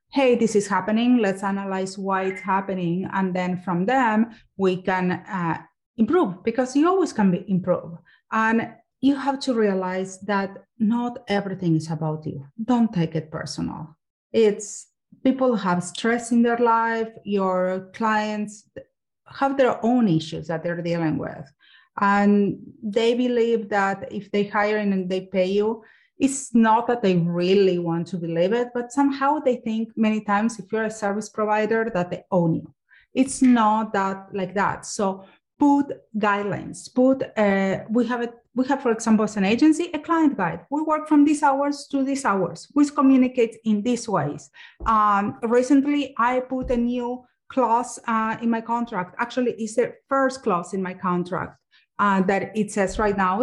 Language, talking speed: English, 170 wpm